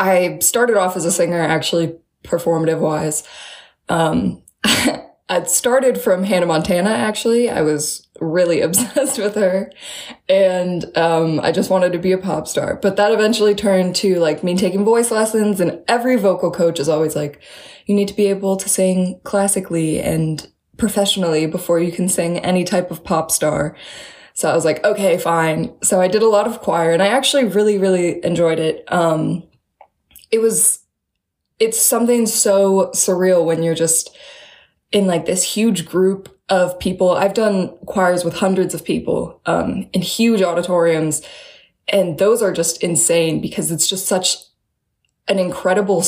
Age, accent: 20-39, American